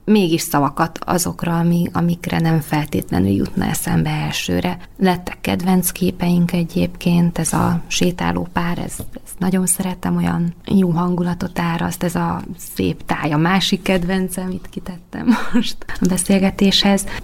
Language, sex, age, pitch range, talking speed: Hungarian, female, 20-39, 170-195 Hz, 130 wpm